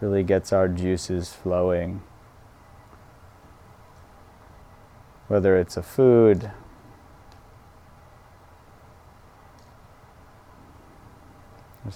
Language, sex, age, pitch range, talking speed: English, male, 30-49, 90-105 Hz, 50 wpm